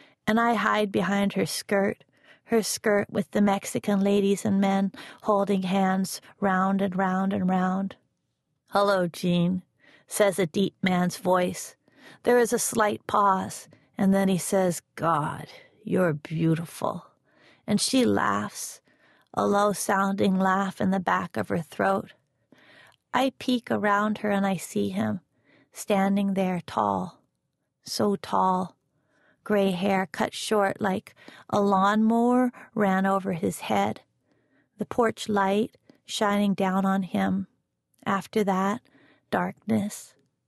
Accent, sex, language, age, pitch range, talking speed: American, female, English, 40-59, 185-205 Hz, 125 wpm